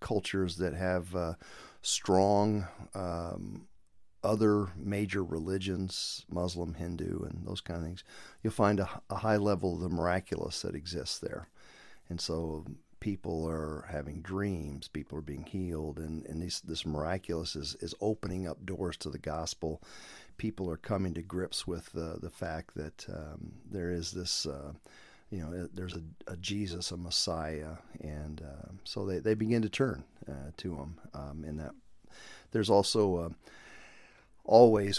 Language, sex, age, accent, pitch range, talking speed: English, male, 50-69, American, 80-100 Hz, 155 wpm